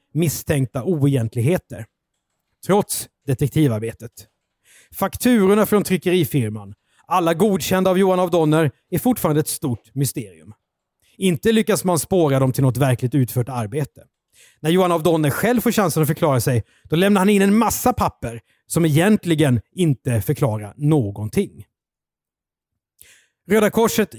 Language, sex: Swedish, male